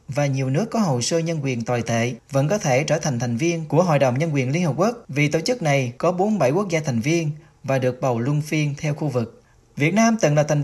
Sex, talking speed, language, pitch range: male, 270 wpm, Vietnamese, 125-165 Hz